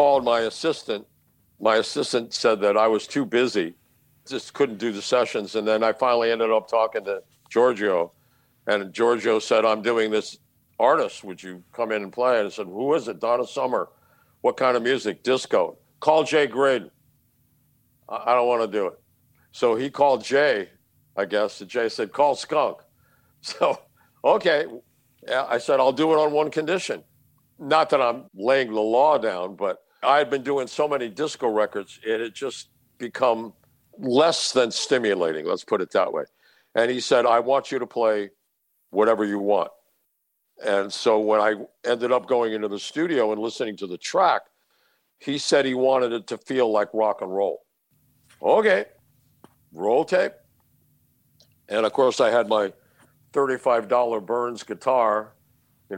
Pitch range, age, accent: 110-135 Hz, 60-79, American